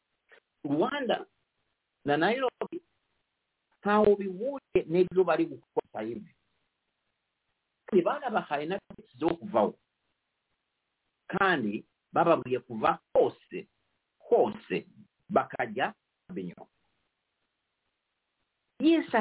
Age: 50-69